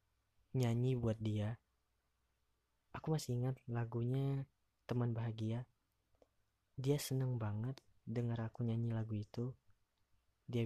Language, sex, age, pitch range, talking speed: Indonesian, female, 20-39, 110-130 Hz, 100 wpm